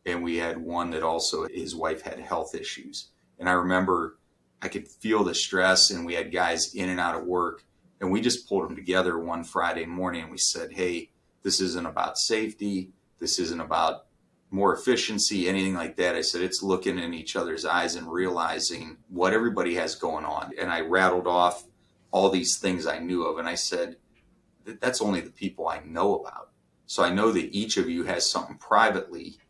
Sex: male